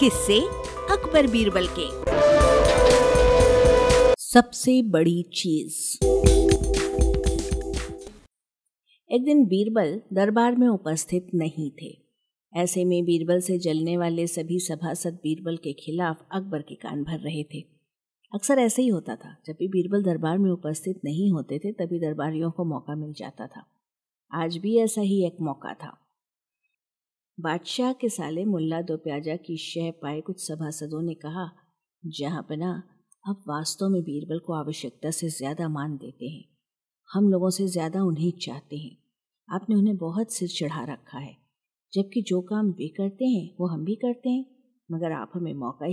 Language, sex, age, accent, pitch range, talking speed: Hindi, female, 50-69, native, 160-215 Hz, 150 wpm